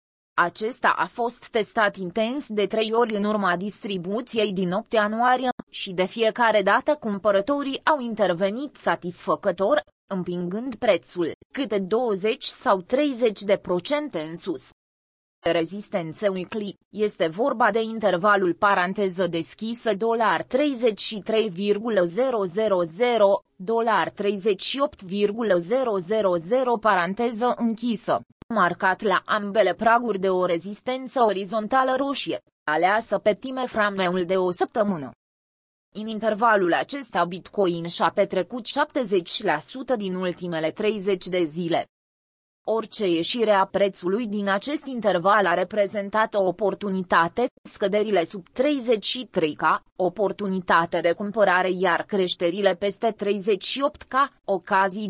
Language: Romanian